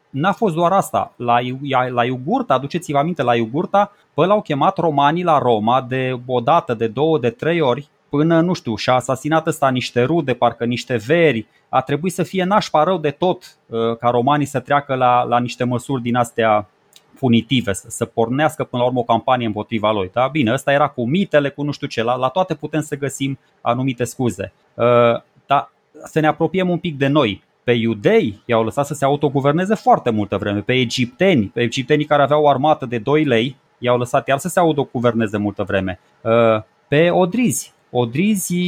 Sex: male